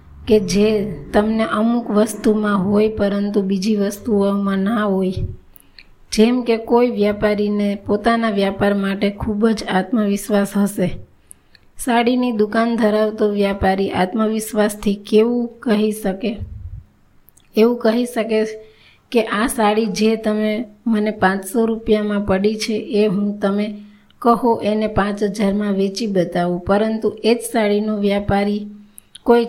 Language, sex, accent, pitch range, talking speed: Gujarati, female, native, 200-220 Hz, 110 wpm